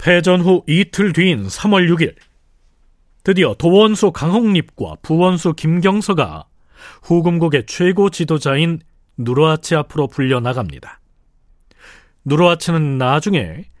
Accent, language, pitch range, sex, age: native, Korean, 130-175 Hz, male, 40-59